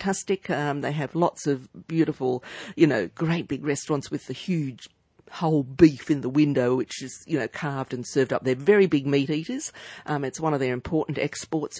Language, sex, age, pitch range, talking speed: English, female, 50-69, 130-160 Hz, 200 wpm